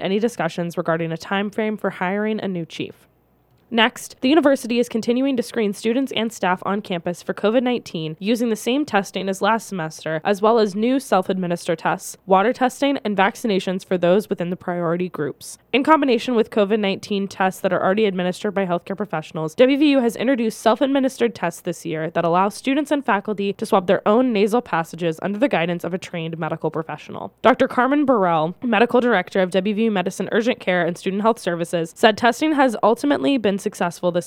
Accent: American